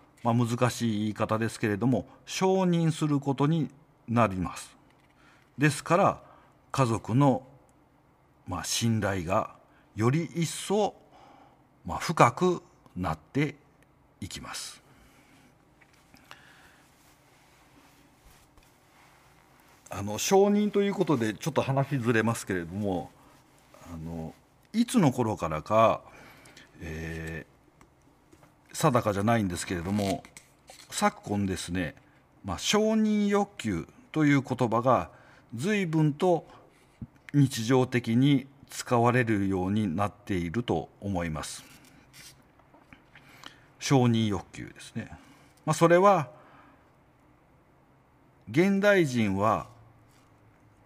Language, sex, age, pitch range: Japanese, male, 50-69, 105-150 Hz